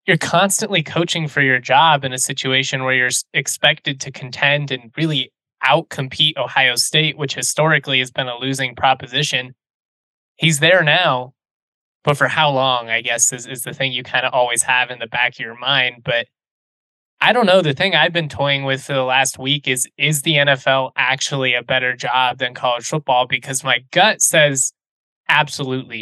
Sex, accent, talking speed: male, American, 185 wpm